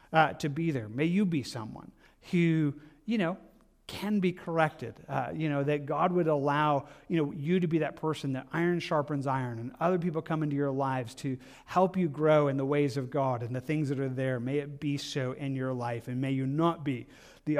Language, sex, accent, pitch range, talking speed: English, male, American, 135-170 Hz, 230 wpm